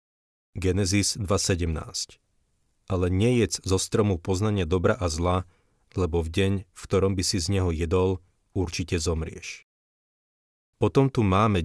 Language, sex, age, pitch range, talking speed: Slovak, male, 40-59, 85-100 Hz, 130 wpm